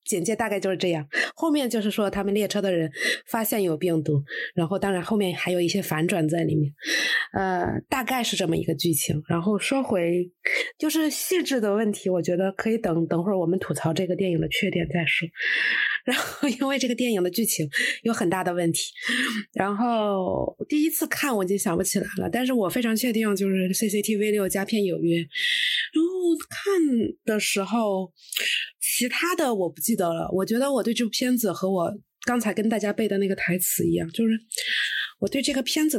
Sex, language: female, Chinese